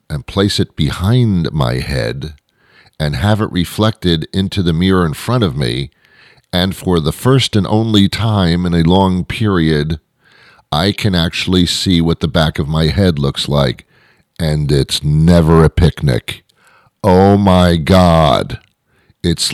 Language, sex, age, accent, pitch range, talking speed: English, male, 50-69, American, 80-105 Hz, 150 wpm